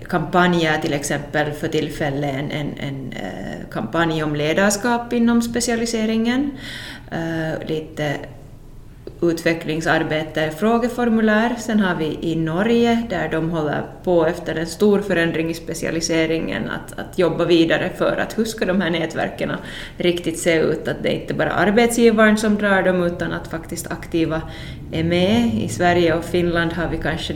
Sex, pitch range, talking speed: female, 160-180 Hz, 150 wpm